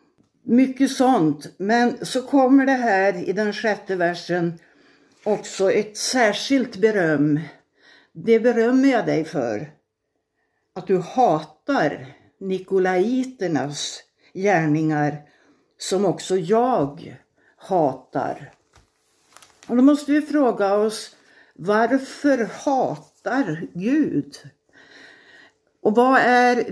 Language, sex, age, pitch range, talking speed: Swedish, female, 60-79, 195-250 Hz, 90 wpm